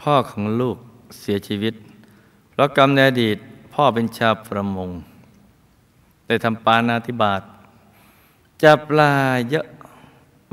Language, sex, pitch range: Thai, male, 105-125 Hz